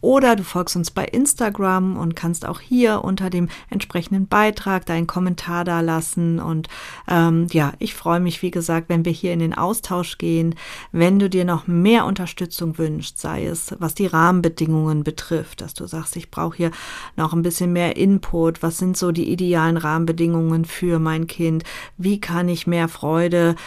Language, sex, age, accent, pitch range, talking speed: German, female, 40-59, German, 165-190 Hz, 180 wpm